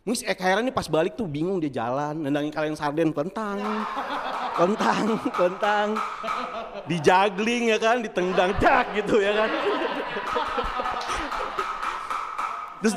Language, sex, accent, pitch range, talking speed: Indonesian, male, native, 195-280 Hz, 115 wpm